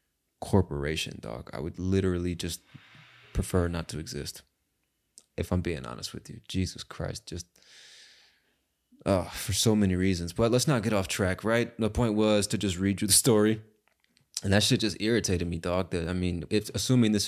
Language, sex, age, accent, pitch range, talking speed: English, male, 20-39, American, 90-110 Hz, 190 wpm